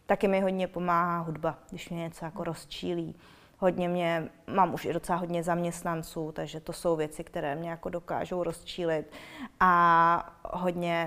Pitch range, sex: 175-195 Hz, female